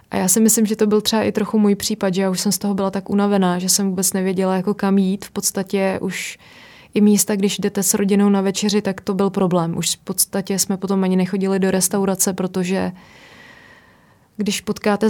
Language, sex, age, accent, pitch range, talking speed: Czech, female, 20-39, native, 190-205 Hz, 220 wpm